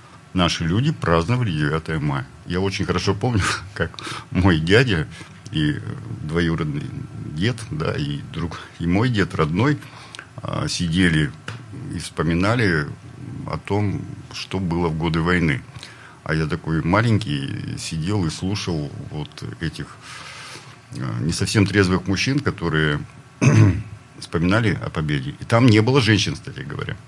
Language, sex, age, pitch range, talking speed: Russian, male, 50-69, 90-135 Hz, 125 wpm